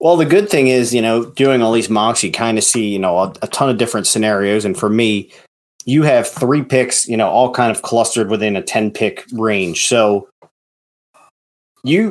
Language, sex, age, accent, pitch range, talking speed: English, male, 30-49, American, 105-120 Hz, 215 wpm